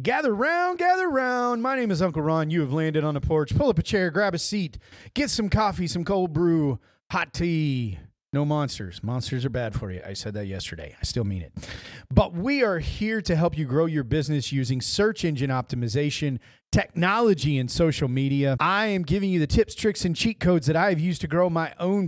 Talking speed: 215 wpm